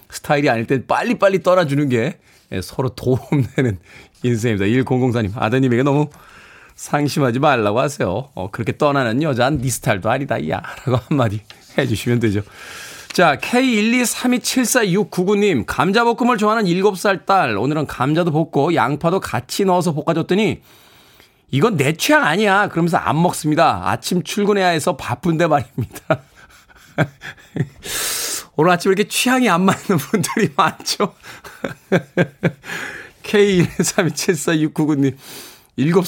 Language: Korean